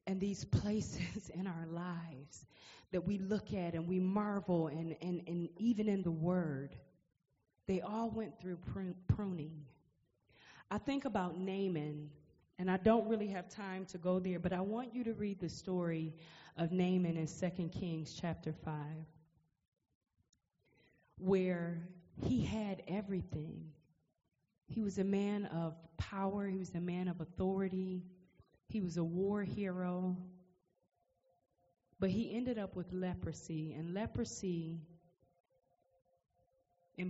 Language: English